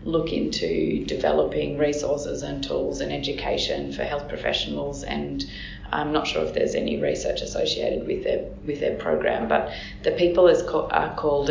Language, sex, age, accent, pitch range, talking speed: English, female, 20-39, Australian, 140-155 Hz, 155 wpm